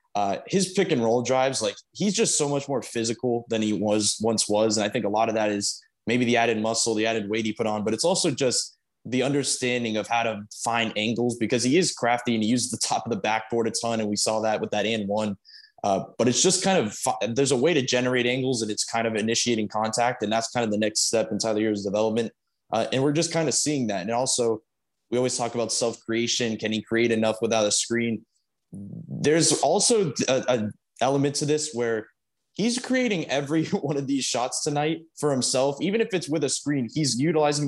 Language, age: English, 20-39